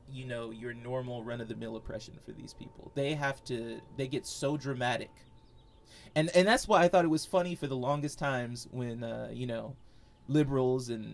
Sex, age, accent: male, 30-49, American